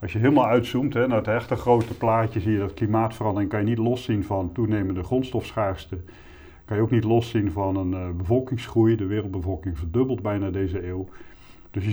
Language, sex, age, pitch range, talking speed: Dutch, male, 50-69, 95-115 Hz, 190 wpm